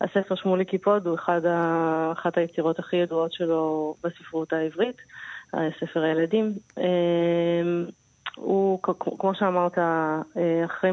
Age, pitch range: 30-49, 165-190 Hz